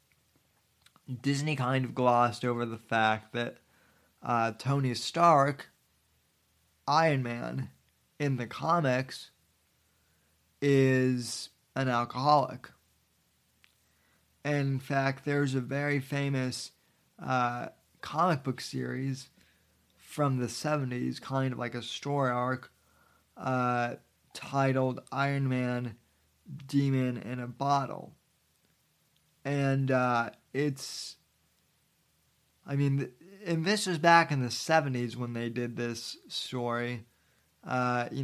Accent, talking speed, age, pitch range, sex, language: American, 100 wpm, 20-39, 120-140 Hz, male, English